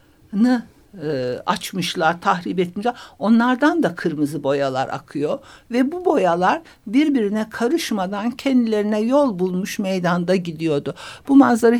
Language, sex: Turkish, male